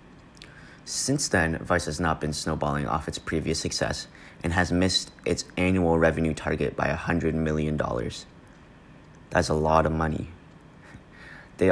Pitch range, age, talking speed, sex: 80-90 Hz, 30-49, 140 wpm, male